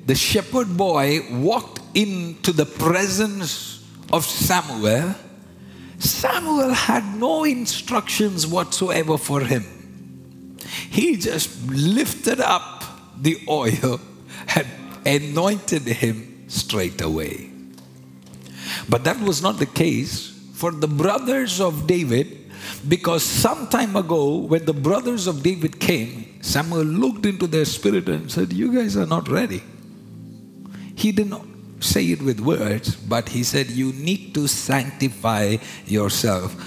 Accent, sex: Indian, male